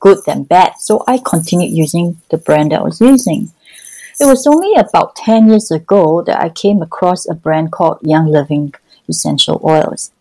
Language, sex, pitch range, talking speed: English, female, 165-225 Hz, 175 wpm